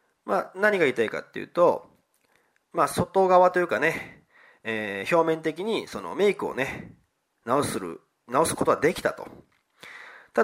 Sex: male